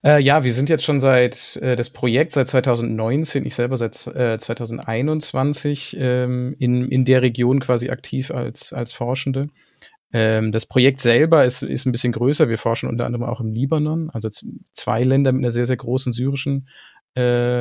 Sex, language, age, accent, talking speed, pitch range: male, German, 30-49, German, 185 wpm, 120-135 Hz